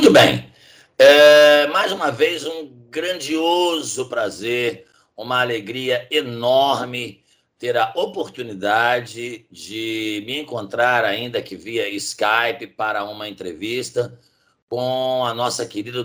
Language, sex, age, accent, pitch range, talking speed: Portuguese, male, 60-79, Brazilian, 105-150 Hz, 105 wpm